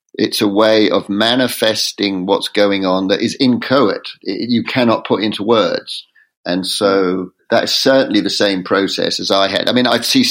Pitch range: 100-130 Hz